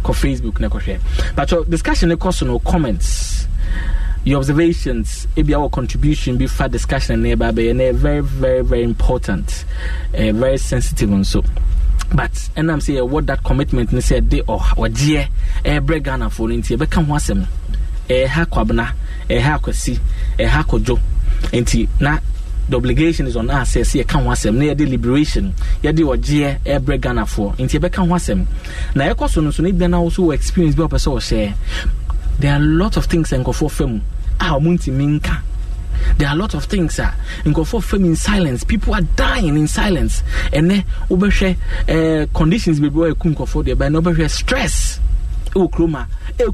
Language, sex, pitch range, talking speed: English, male, 105-160 Hz, 160 wpm